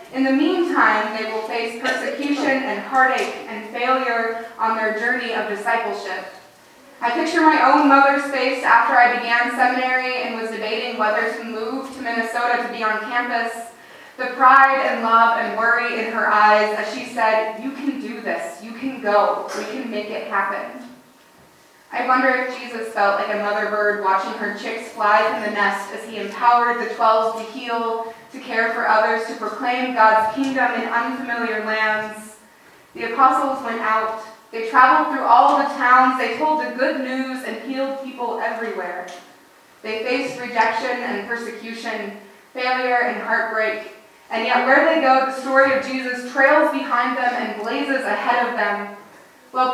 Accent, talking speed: American, 170 wpm